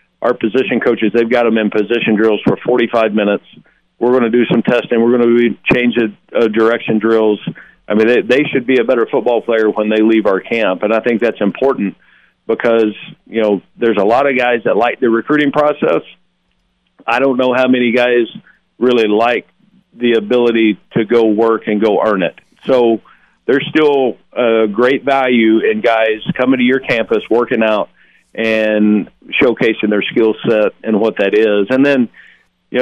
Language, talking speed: English, 185 wpm